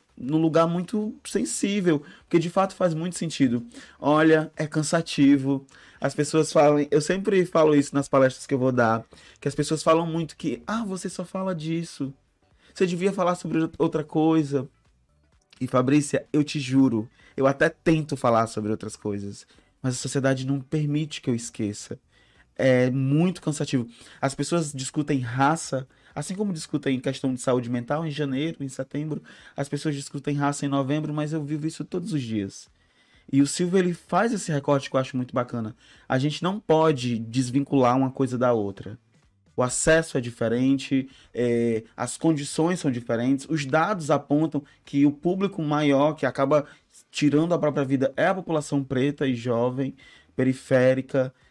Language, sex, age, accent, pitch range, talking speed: Portuguese, male, 20-39, Brazilian, 130-160 Hz, 170 wpm